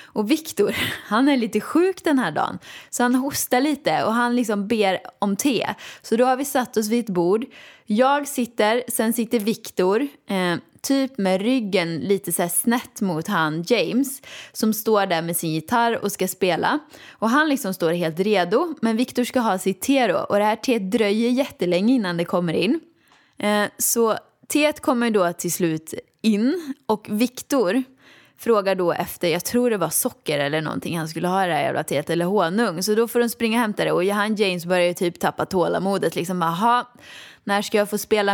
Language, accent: Swedish, native